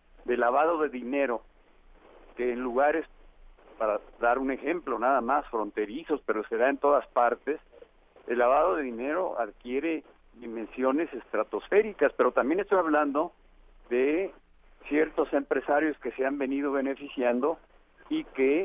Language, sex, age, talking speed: Spanish, male, 50-69, 130 wpm